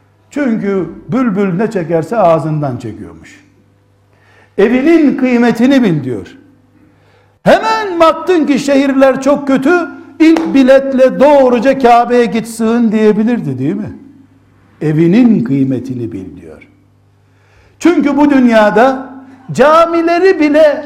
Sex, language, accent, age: male, Turkish, native, 60-79